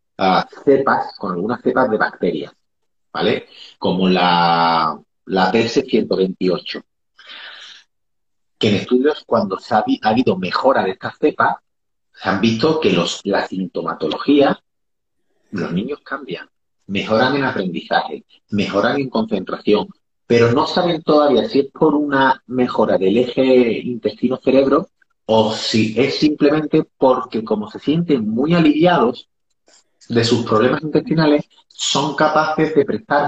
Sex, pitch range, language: male, 115-155 Hz, English